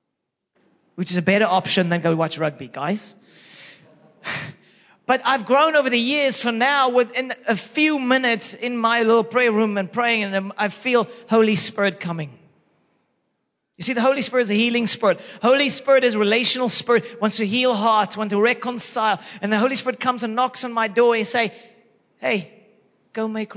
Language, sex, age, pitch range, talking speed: English, male, 30-49, 175-230 Hz, 185 wpm